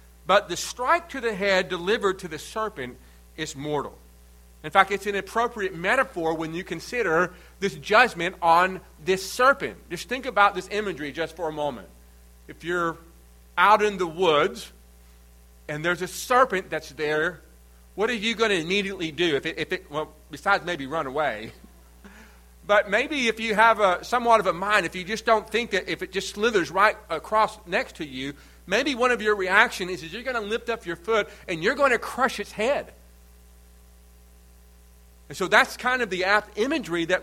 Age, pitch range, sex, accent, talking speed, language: 40-59, 135-210 Hz, male, American, 190 wpm, English